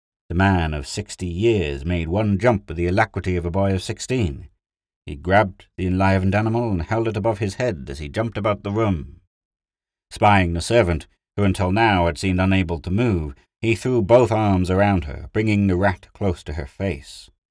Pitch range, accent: 85-105 Hz, British